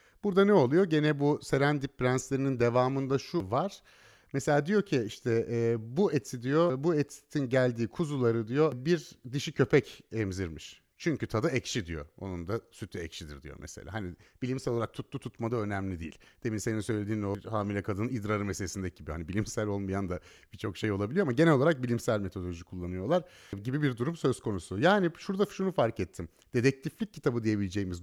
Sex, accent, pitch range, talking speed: male, native, 105-160 Hz, 170 wpm